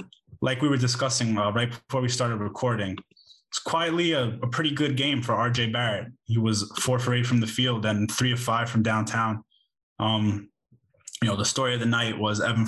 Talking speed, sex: 210 wpm, male